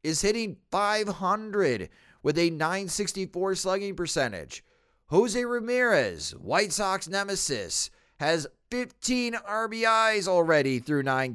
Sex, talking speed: male, 100 wpm